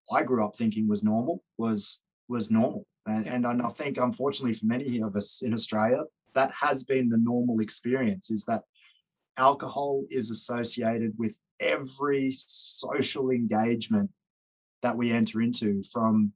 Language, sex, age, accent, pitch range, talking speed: English, male, 20-39, Australian, 110-130 Hz, 145 wpm